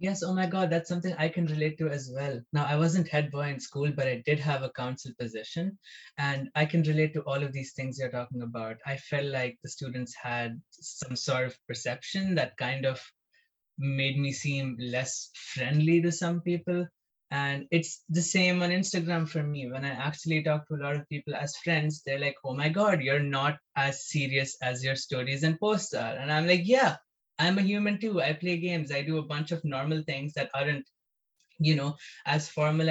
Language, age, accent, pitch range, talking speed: English, 20-39, Indian, 135-170 Hz, 215 wpm